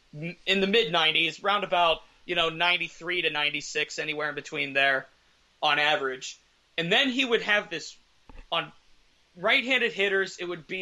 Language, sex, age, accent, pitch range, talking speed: English, male, 30-49, American, 155-195 Hz, 155 wpm